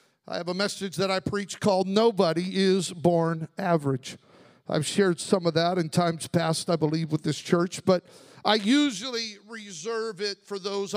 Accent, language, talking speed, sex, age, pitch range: American, English, 175 wpm, male, 50-69, 175-230 Hz